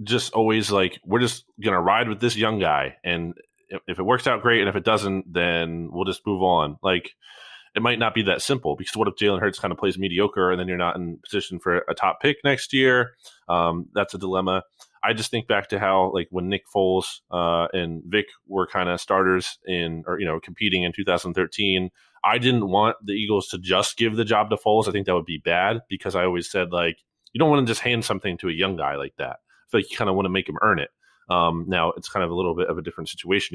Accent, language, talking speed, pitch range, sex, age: American, English, 250 wpm, 90-110 Hz, male, 20-39